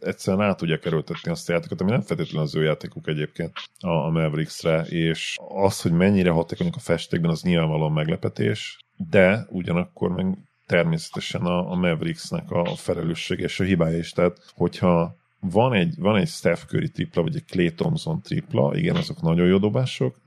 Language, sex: Hungarian, male